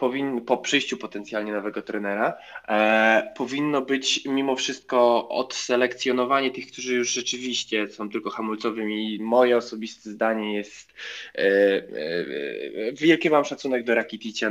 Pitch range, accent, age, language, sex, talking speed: 110-130 Hz, native, 20-39, Polish, male, 110 wpm